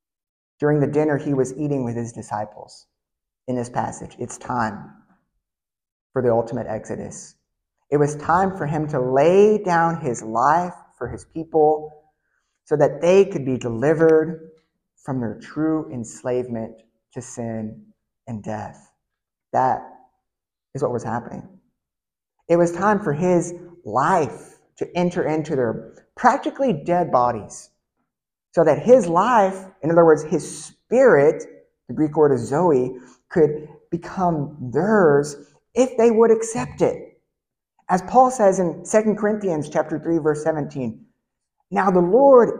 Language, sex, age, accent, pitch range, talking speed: English, male, 30-49, American, 130-180 Hz, 140 wpm